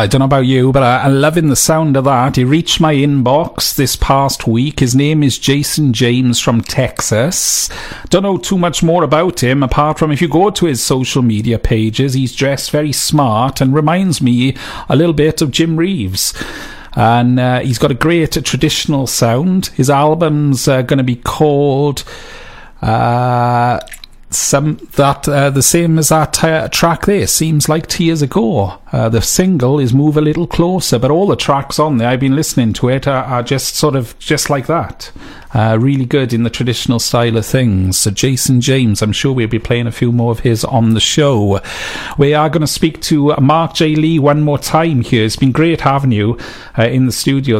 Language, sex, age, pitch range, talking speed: English, male, 40-59, 120-150 Hz, 205 wpm